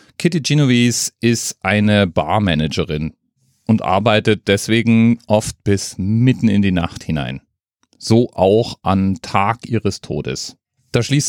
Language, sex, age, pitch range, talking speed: German, male, 40-59, 95-125 Hz, 120 wpm